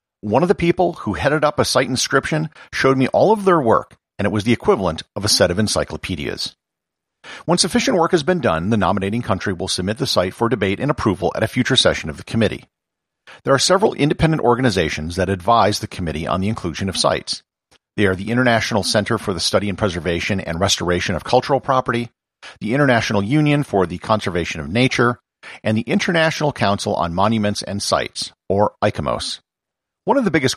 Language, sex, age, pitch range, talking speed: English, male, 50-69, 95-130 Hz, 200 wpm